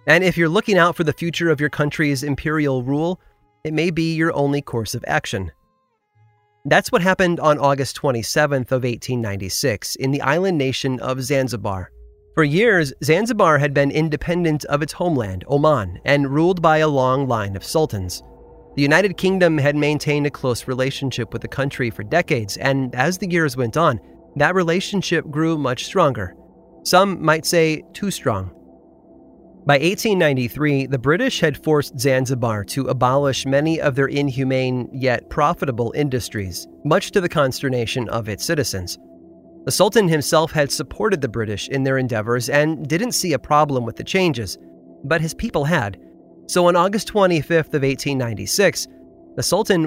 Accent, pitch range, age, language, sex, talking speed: American, 120-160 Hz, 30-49, English, male, 160 wpm